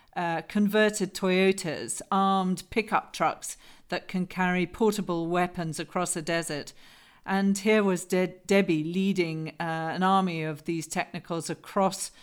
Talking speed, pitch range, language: 130 wpm, 165-200 Hz, English